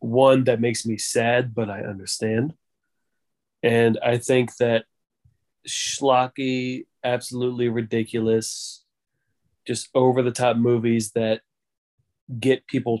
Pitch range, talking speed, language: 115-130 Hz, 95 wpm, English